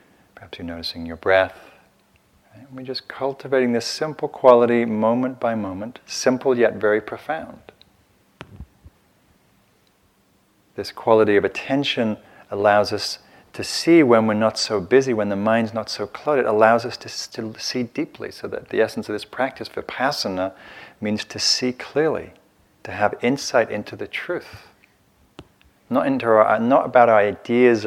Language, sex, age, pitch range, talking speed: English, male, 40-59, 100-130 Hz, 150 wpm